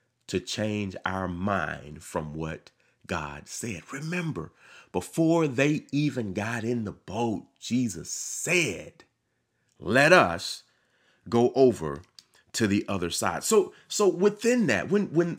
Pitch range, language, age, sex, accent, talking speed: 100-155 Hz, English, 30-49, male, American, 125 wpm